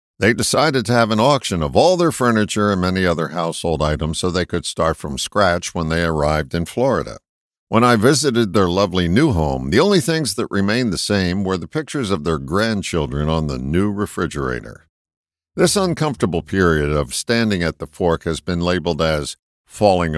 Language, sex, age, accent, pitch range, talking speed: English, male, 50-69, American, 85-120 Hz, 185 wpm